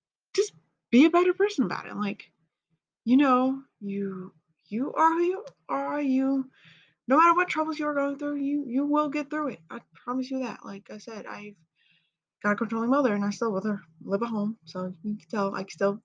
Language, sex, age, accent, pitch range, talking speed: English, female, 20-39, American, 185-265 Hz, 220 wpm